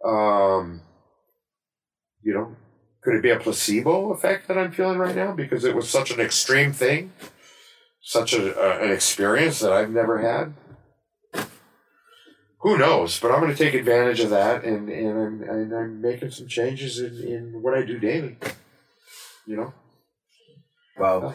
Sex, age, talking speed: male, 50-69, 160 wpm